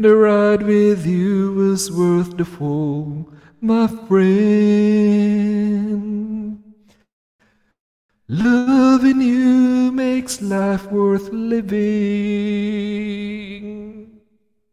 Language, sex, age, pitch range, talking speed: Filipino, male, 50-69, 205-260 Hz, 65 wpm